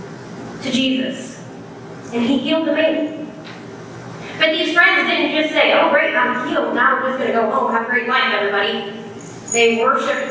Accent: American